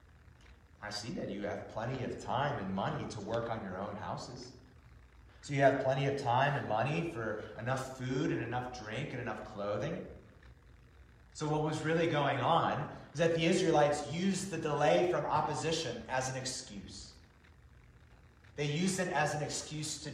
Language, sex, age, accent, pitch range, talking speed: English, male, 30-49, American, 100-140 Hz, 175 wpm